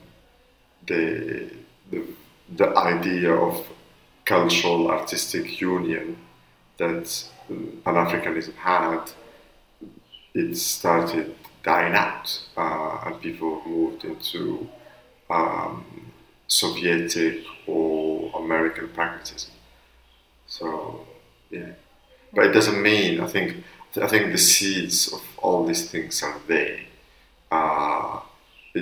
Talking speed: 95 wpm